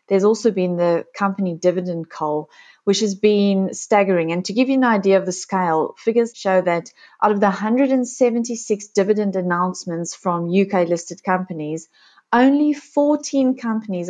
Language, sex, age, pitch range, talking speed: English, female, 30-49, 175-220 Hz, 150 wpm